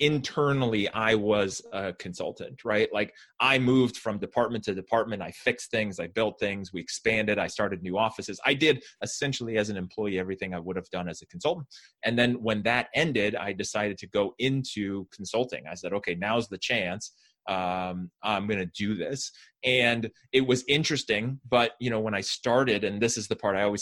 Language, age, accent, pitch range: English, 20-39, American, 100-120 Hz